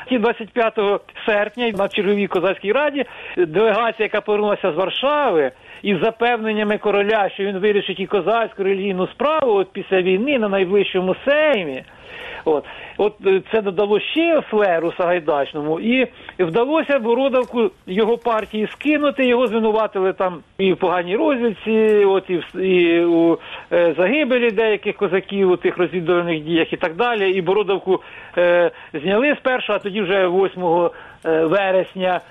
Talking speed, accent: 135 wpm, native